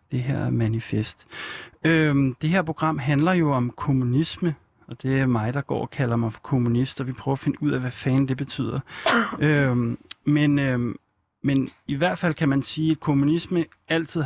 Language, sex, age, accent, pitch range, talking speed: Danish, male, 30-49, native, 125-150 Hz, 195 wpm